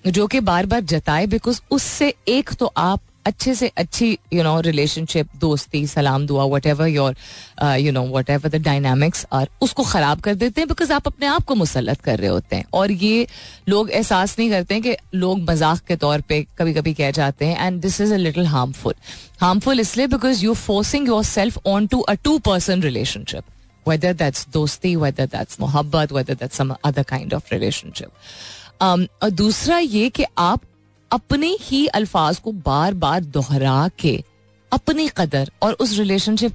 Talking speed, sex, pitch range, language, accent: 165 wpm, female, 145-215 Hz, Hindi, native